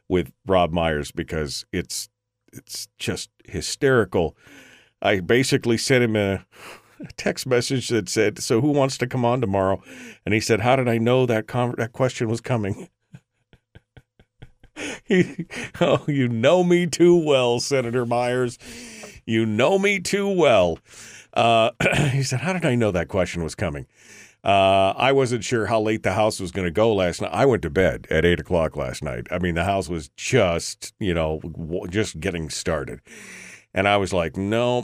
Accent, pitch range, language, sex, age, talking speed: American, 90-120 Hz, English, male, 40-59, 170 wpm